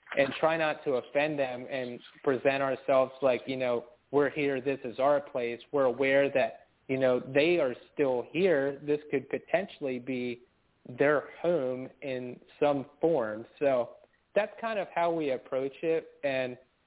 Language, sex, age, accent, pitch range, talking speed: English, male, 30-49, American, 125-145 Hz, 160 wpm